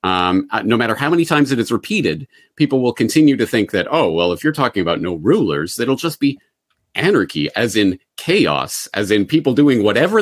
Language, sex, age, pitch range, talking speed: English, male, 40-59, 105-145 Hz, 210 wpm